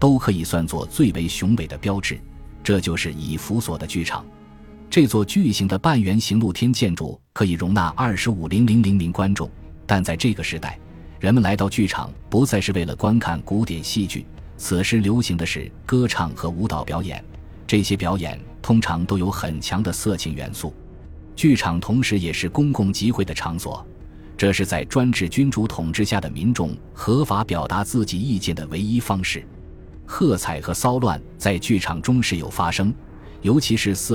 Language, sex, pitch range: Chinese, male, 80-110 Hz